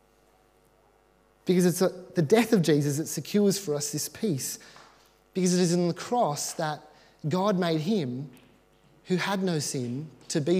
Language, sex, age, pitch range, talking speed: English, male, 30-49, 125-180 Hz, 160 wpm